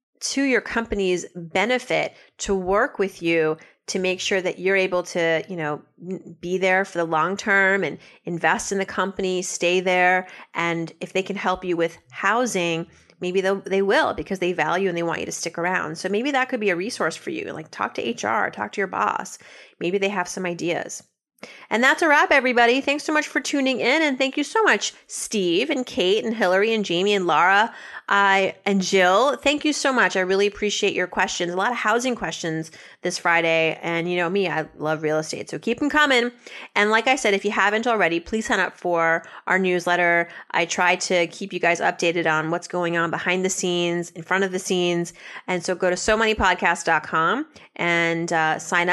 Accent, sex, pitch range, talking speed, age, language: American, female, 170-205 Hz, 205 wpm, 30-49, English